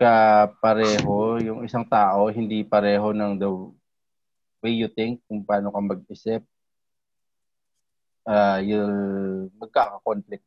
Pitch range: 95-110 Hz